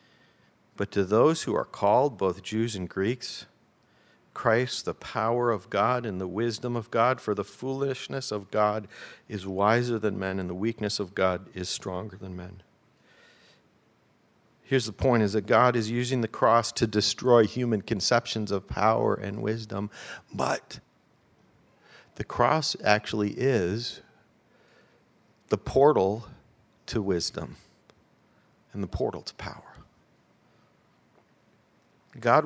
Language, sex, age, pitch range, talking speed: English, male, 50-69, 105-125 Hz, 130 wpm